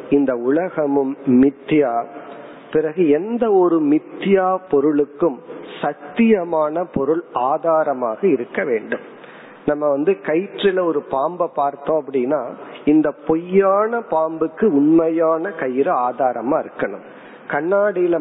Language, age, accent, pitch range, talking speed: Tamil, 40-59, native, 140-185 Hz, 90 wpm